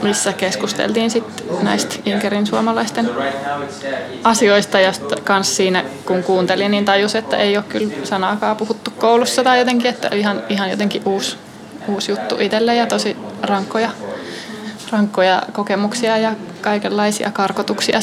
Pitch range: 195-225 Hz